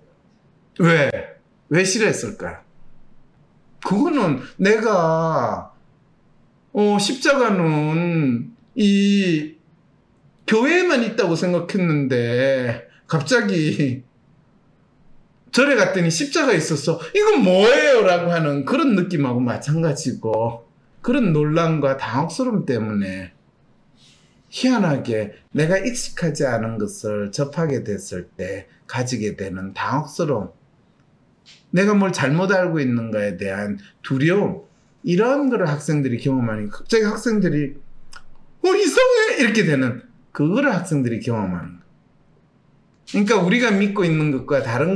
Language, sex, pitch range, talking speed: English, male, 125-195 Hz, 90 wpm